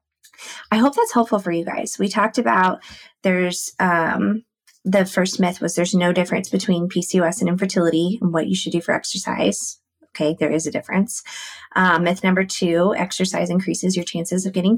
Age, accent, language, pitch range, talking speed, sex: 20-39, American, English, 175-215 Hz, 185 wpm, female